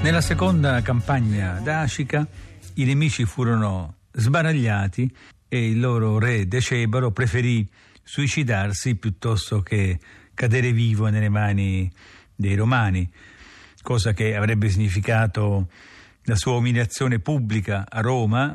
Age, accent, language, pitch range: 50-69, native, Italian, 100-130 Hz